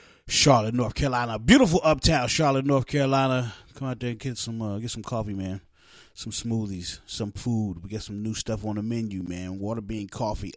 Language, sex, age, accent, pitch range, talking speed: English, male, 30-49, American, 105-145 Hz, 200 wpm